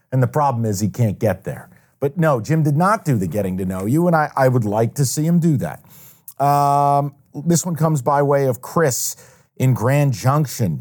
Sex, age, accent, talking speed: male, 40-59, American, 220 wpm